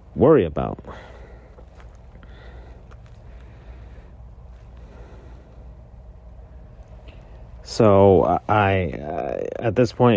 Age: 30-49